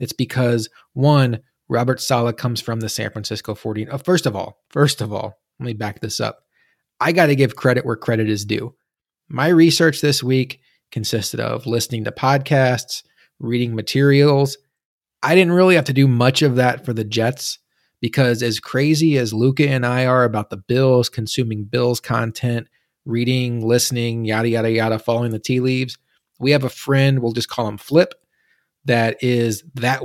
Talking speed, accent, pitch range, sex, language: 180 wpm, American, 115-135 Hz, male, English